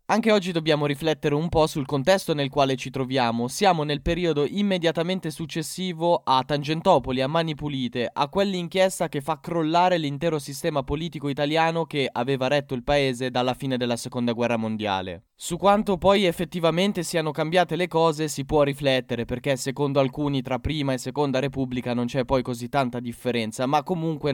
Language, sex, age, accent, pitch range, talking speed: Italian, male, 10-29, native, 135-170 Hz, 170 wpm